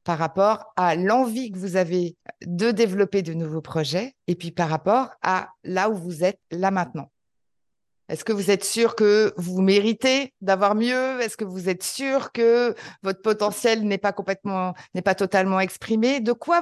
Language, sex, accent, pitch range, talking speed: French, female, French, 185-235 Hz, 180 wpm